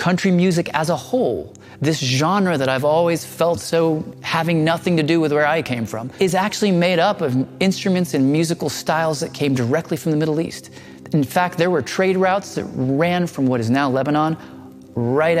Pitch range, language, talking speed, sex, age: 125-170 Hz, Arabic, 200 wpm, male, 30-49